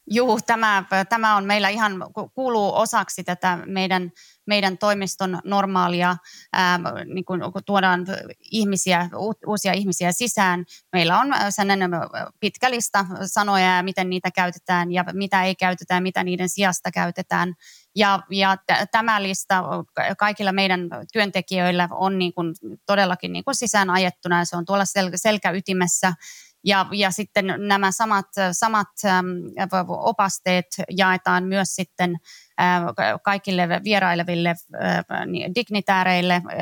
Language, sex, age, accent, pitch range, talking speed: Finnish, female, 30-49, native, 180-205 Hz, 110 wpm